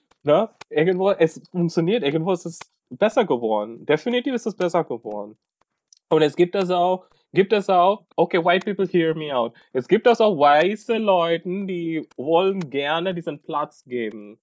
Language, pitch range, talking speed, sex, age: German, 130-180 Hz, 165 wpm, male, 20-39